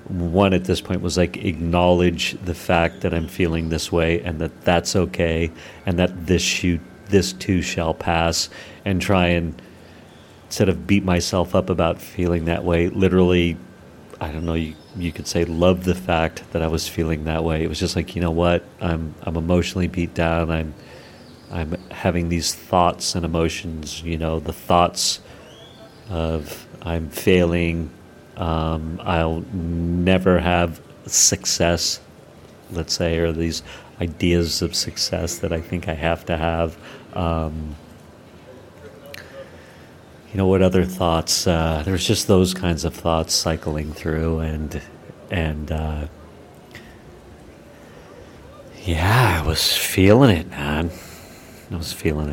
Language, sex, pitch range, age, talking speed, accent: English, male, 80-90 Hz, 40-59, 145 wpm, American